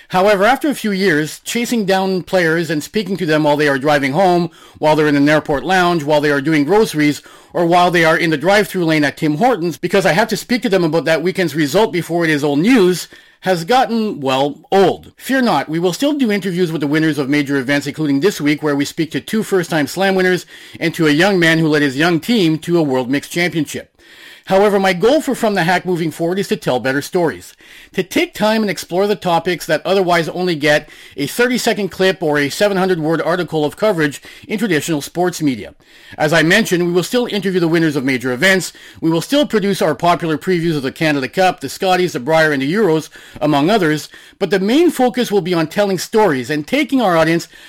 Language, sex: English, male